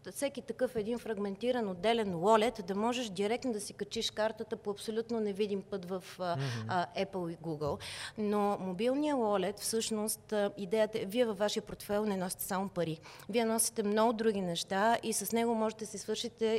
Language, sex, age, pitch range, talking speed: Bulgarian, female, 30-49, 185-230 Hz, 170 wpm